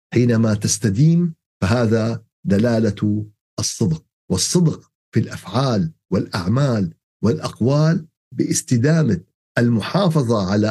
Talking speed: 75 wpm